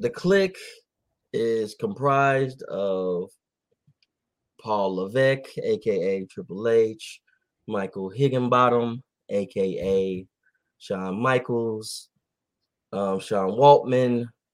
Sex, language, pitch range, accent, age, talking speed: male, English, 100-140 Hz, American, 20-39, 75 wpm